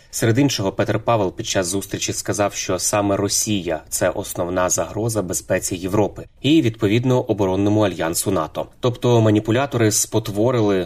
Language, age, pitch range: Ukrainian, 20-39, 95-115 Hz